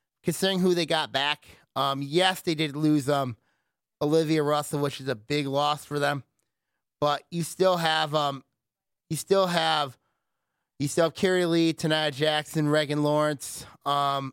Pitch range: 145-165 Hz